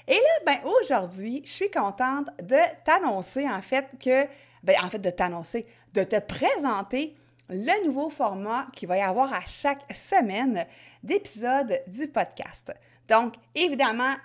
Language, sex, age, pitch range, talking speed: French, female, 30-49, 205-305 Hz, 145 wpm